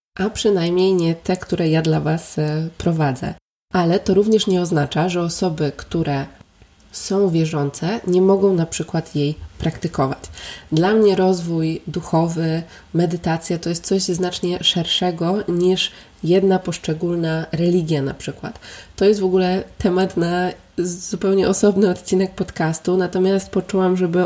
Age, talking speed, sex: 20-39, 135 wpm, female